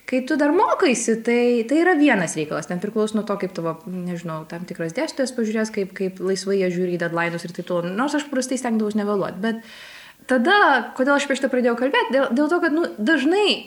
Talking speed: 205 wpm